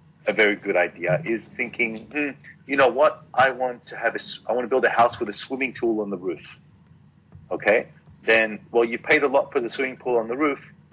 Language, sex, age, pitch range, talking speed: English, male, 40-59, 105-145 Hz, 230 wpm